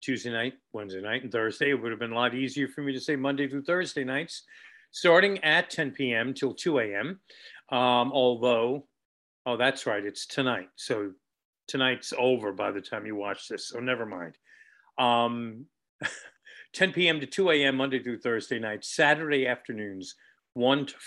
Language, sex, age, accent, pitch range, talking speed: English, male, 50-69, American, 110-140 Hz, 170 wpm